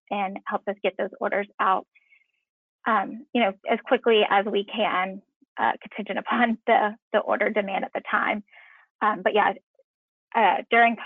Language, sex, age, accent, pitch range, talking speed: English, female, 10-29, American, 200-260 Hz, 165 wpm